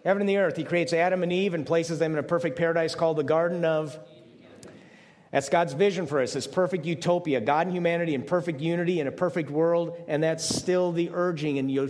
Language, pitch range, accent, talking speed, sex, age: English, 155-185 Hz, American, 215 wpm, male, 50-69